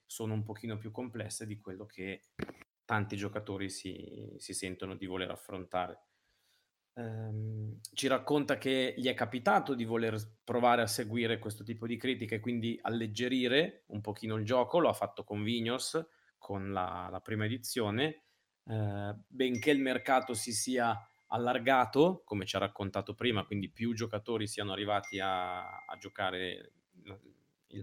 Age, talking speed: 20-39, 150 wpm